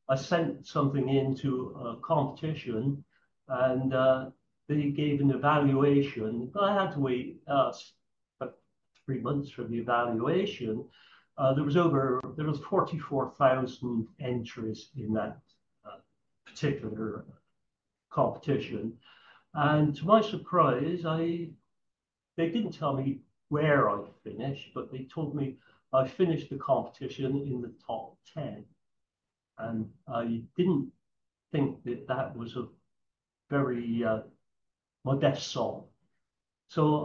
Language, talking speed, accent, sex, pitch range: English, 120 wpm, British, male, 125-150 Hz